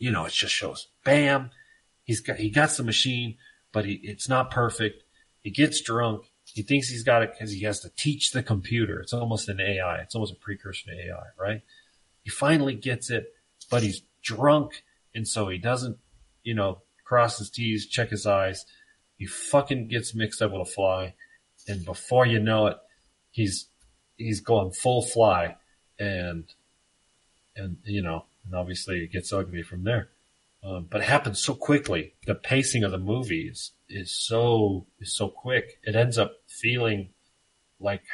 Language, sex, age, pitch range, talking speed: English, male, 30-49, 95-120 Hz, 175 wpm